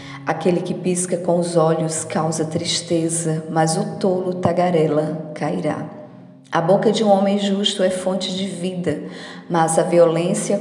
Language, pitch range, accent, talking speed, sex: Portuguese, 160-190 Hz, Brazilian, 145 wpm, female